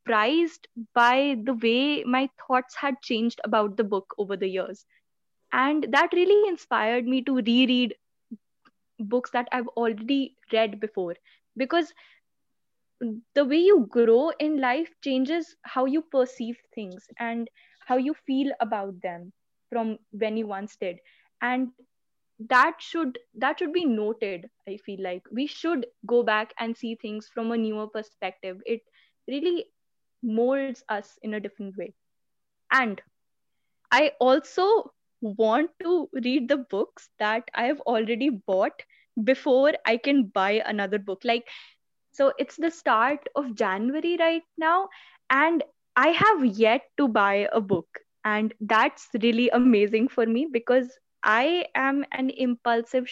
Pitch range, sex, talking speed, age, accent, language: 220-275 Hz, female, 140 wpm, 10-29, Indian, English